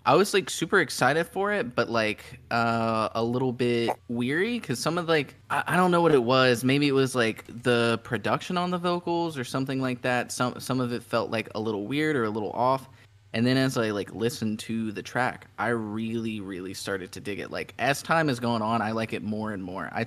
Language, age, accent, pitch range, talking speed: English, 20-39, American, 110-130 Hz, 240 wpm